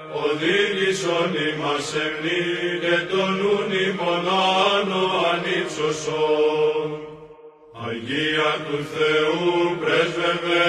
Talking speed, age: 65 wpm, 50-69